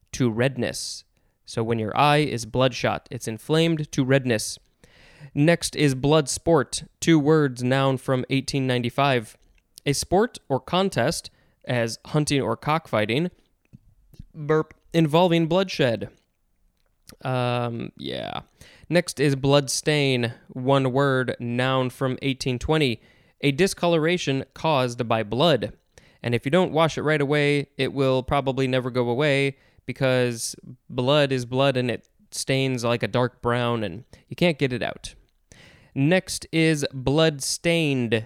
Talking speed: 130 wpm